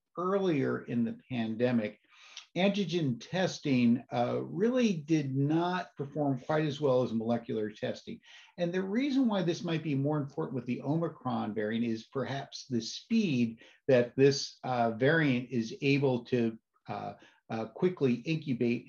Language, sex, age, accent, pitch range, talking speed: English, male, 50-69, American, 120-160 Hz, 145 wpm